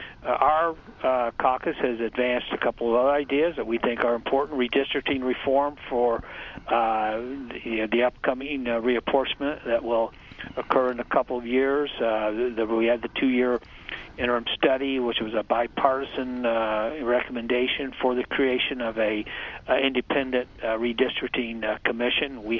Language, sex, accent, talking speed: English, male, American, 165 wpm